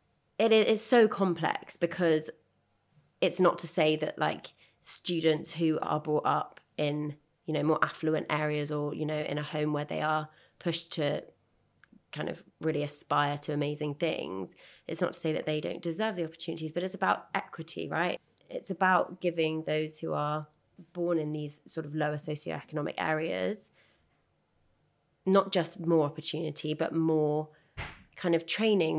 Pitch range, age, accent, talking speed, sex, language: 150-175 Hz, 20-39, British, 160 wpm, female, English